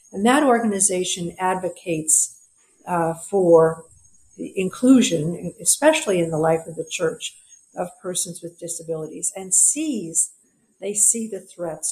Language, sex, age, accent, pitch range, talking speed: English, female, 60-79, American, 155-185 Hz, 125 wpm